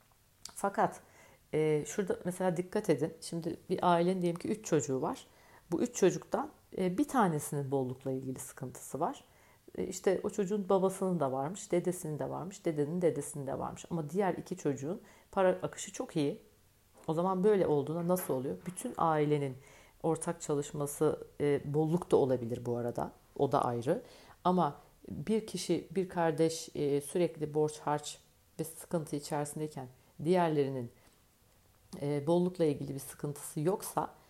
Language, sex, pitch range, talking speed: Turkish, female, 135-180 Hz, 145 wpm